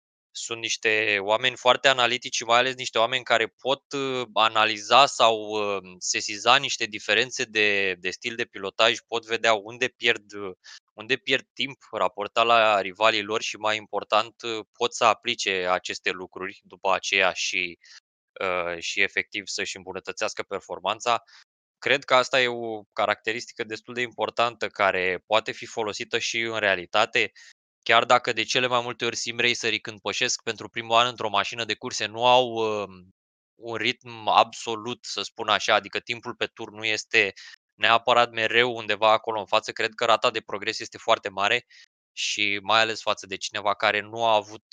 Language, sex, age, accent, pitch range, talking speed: Romanian, male, 20-39, native, 105-120 Hz, 165 wpm